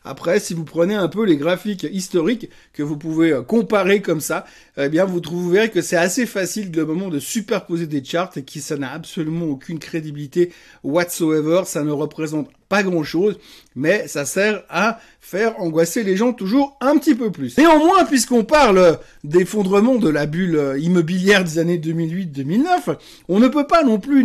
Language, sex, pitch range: French, male, 160-225 Hz